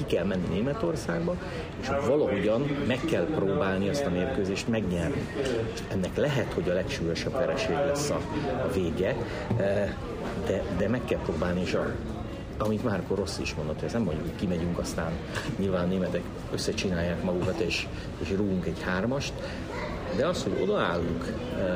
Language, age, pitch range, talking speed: Hungarian, 50-69, 85-110 Hz, 150 wpm